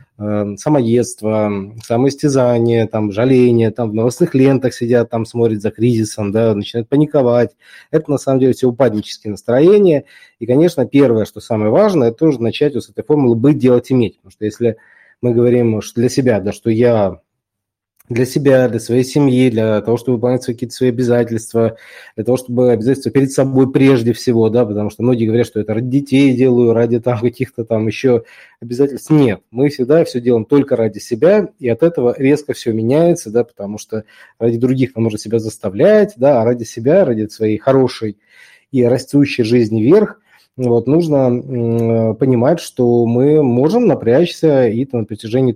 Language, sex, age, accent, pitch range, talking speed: Russian, male, 20-39, native, 115-135 Hz, 170 wpm